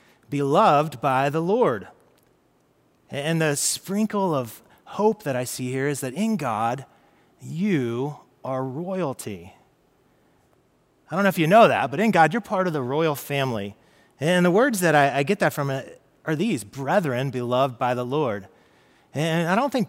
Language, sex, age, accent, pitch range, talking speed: English, male, 30-49, American, 125-180 Hz, 170 wpm